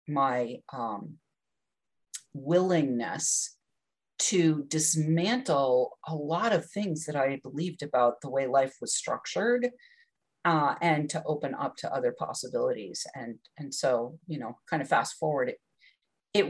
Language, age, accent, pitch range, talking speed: English, 40-59, American, 145-185 Hz, 135 wpm